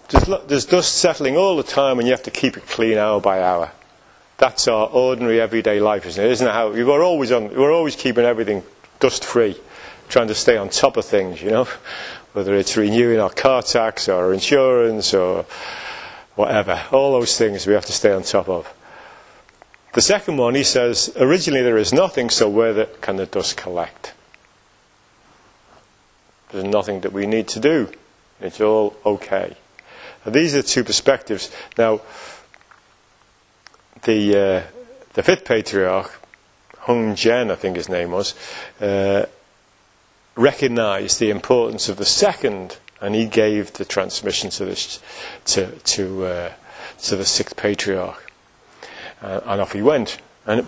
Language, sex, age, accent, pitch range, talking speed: English, male, 40-59, British, 100-125 Hz, 165 wpm